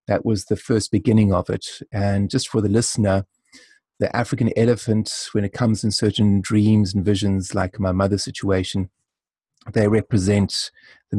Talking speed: 160 wpm